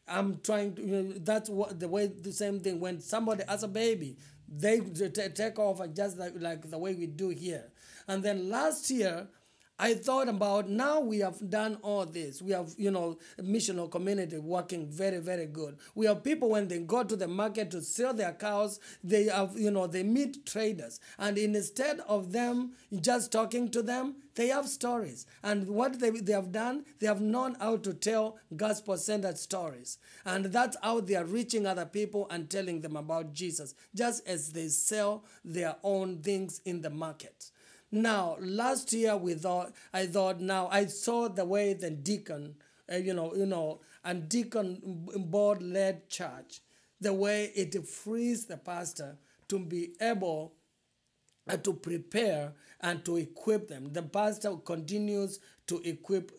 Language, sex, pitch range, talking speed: English, male, 170-215 Hz, 175 wpm